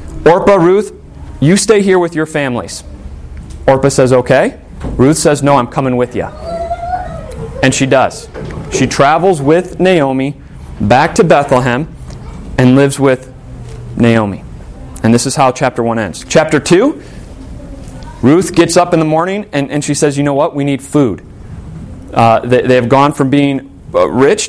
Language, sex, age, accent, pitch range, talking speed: English, male, 30-49, American, 125-160 Hz, 160 wpm